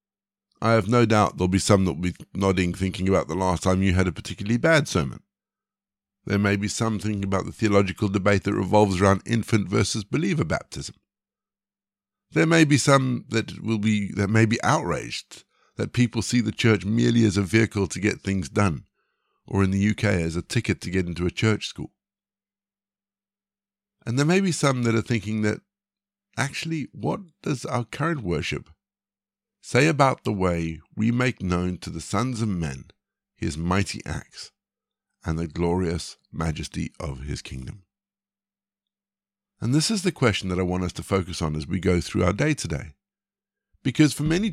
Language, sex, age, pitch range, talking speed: English, male, 60-79, 95-150 Hz, 180 wpm